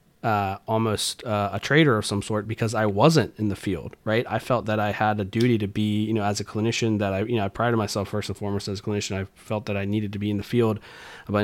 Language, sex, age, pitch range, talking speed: English, male, 30-49, 105-120 Hz, 280 wpm